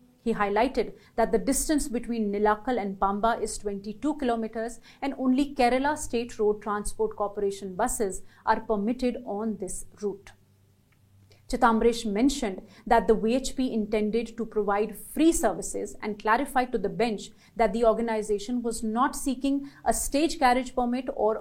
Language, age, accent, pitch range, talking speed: English, 40-59, Indian, 205-250 Hz, 145 wpm